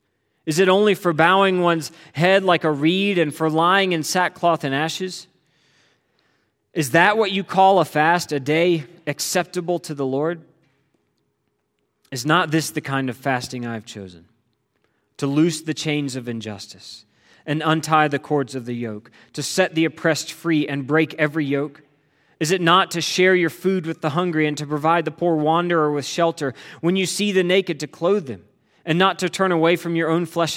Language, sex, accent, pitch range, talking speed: English, male, American, 145-175 Hz, 190 wpm